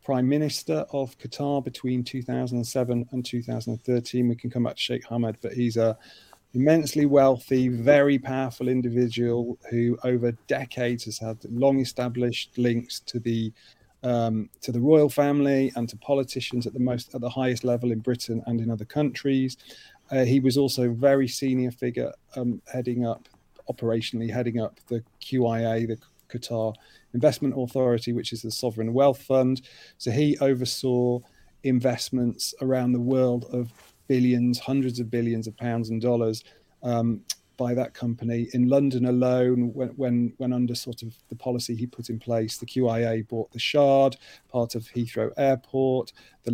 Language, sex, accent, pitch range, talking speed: English, male, British, 115-130 Hz, 160 wpm